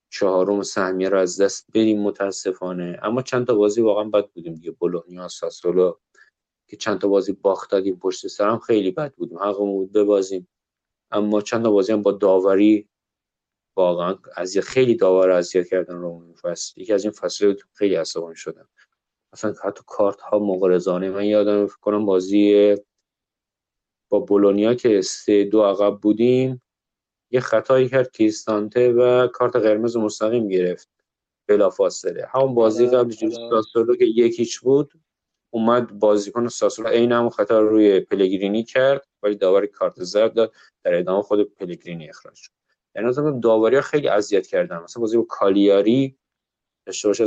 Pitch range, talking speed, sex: 100-125 Hz, 150 wpm, male